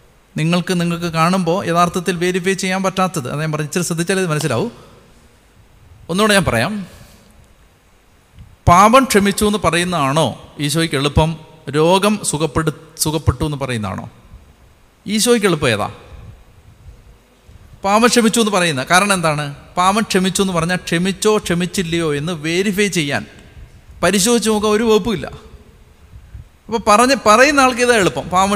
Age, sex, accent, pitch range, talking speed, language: 50-69, male, native, 130-200 Hz, 120 wpm, Malayalam